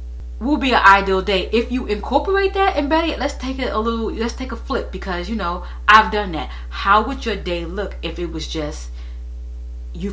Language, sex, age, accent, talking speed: English, female, 30-49, American, 220 wpm